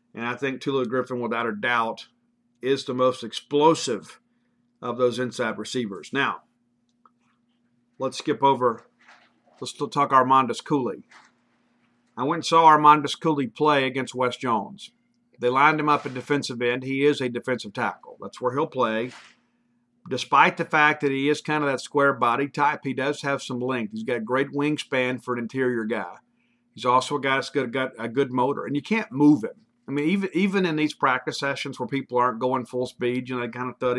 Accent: American